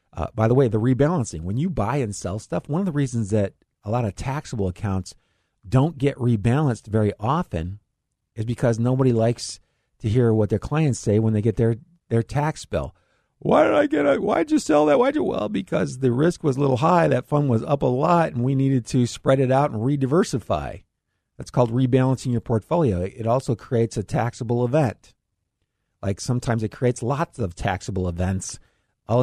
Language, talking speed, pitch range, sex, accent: English, 200 wpm, 105-135 Hz, male, American